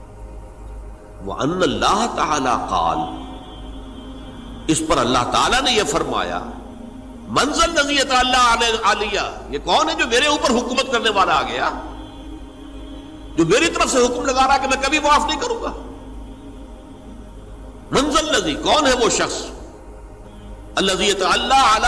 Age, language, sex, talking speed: 60-79, Urdu, male, 125 wpm